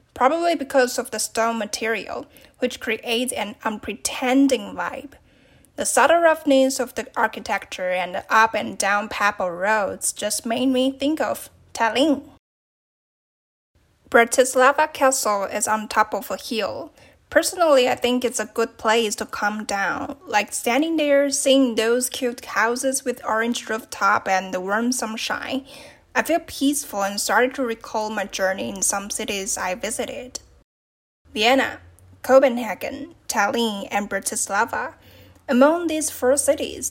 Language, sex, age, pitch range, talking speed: English, female, 10-29, 215-275 Hz, 140 wpm